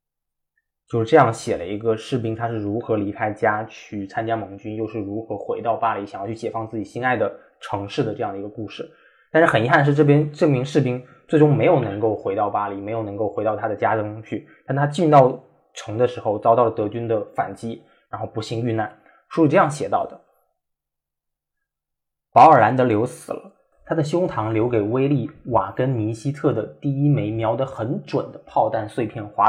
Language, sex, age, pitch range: Chinese, male, 20-39, 110-145 Hz